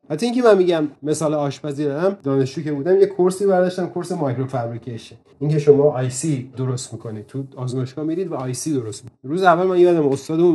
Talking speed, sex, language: 175 wpm, male, Persian